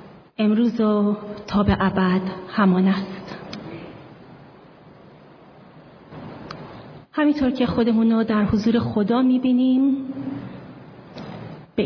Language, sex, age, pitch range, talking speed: Persian, female, 30-49, 200-240 Hz, 75 wpm